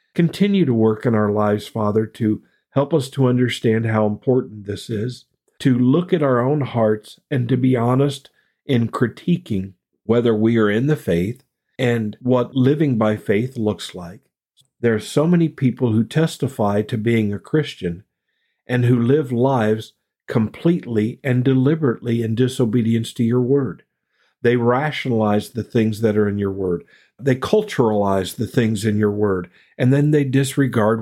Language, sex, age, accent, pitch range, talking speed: English, male, 50-69, American, 110-135 Hz, 165 wpm